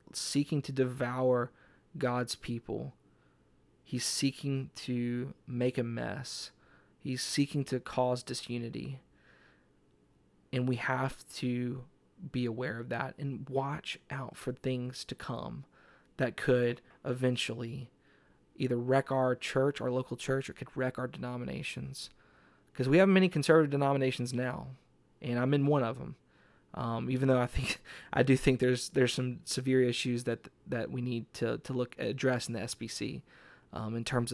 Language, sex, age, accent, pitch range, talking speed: English, male, 20-39, American, 120-135 Hz, 150 wpm